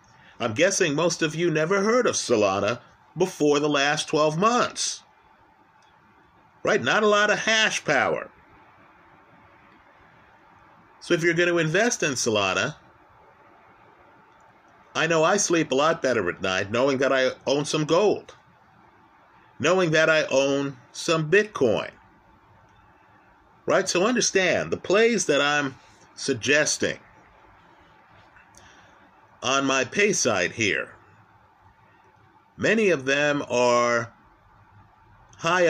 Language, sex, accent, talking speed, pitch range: English, male, American, 115 wpm, 130-170 Hz